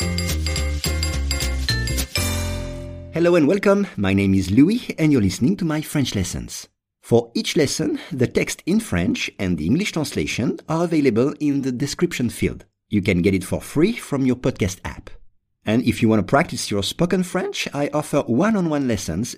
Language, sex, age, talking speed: English, male, 50-69, 165 wpm